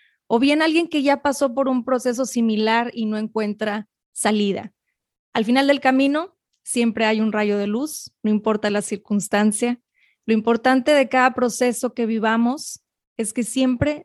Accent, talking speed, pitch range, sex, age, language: Mexican, 160 wpm, 220-260 Hz, female, 20-39, Spanish